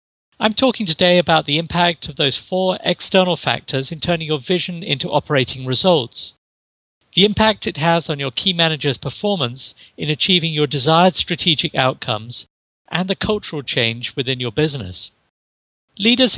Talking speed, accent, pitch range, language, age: 150 wpm, British, 135-180 Hz, English, 50-69